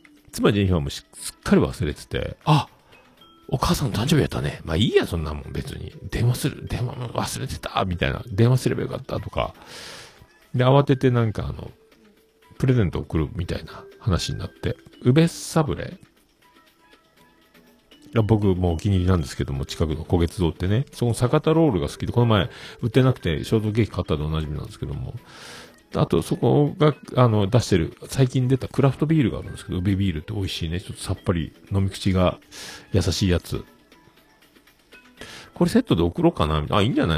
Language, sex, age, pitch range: Japanese, male, 50-69, 85-125 Hz